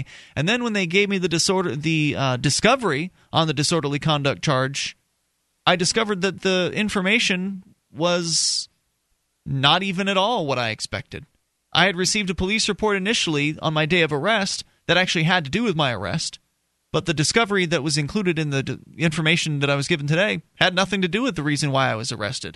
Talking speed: 200 wpm